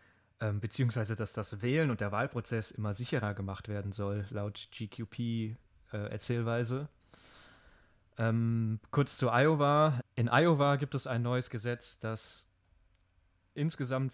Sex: male